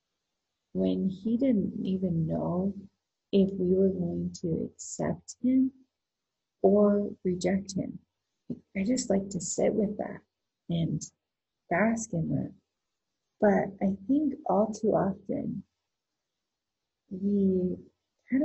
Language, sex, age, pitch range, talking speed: English, female, 30-49, 180-210 Hz, 110 wpm